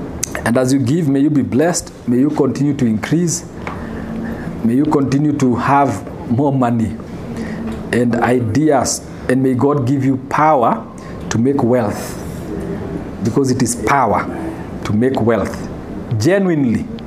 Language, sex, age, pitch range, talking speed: English, male, 50-69, 120-165 Hz, 135 wpm